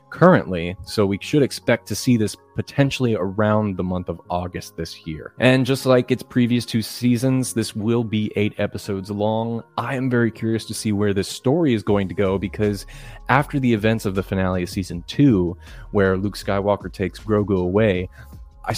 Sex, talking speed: male, 190 wpm